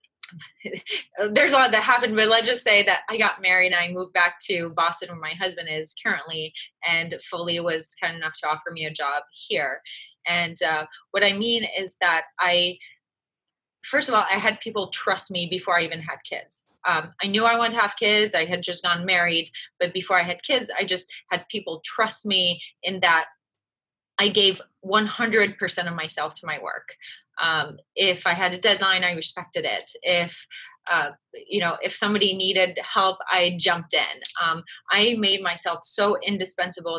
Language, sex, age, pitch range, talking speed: English, female, 20-39, 170-205 Hz, 190 wpm